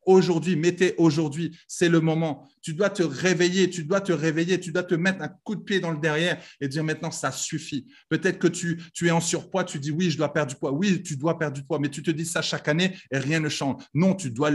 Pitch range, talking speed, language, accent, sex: 155-185 Hz, 270 wpm, French, French, male